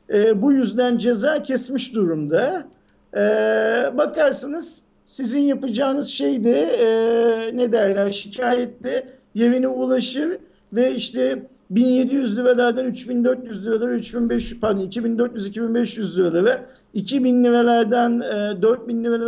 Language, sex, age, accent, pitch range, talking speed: Turkish, male, 50-69, native, 210-255 Hz, 105 wpm